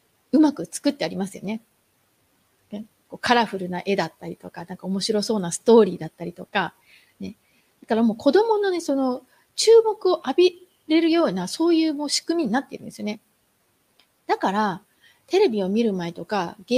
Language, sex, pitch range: Japanese, female, 205-325 Hz